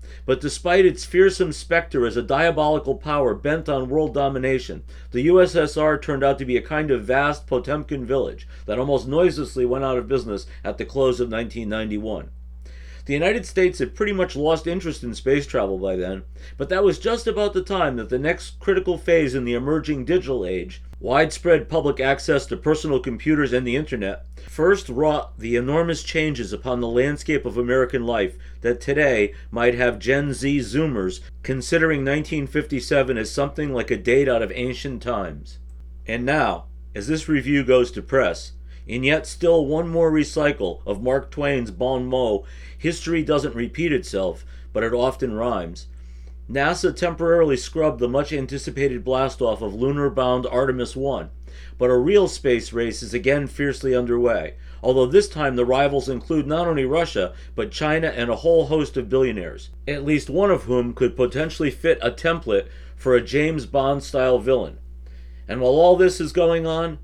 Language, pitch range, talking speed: English, 115-155 Hz, 175 wpm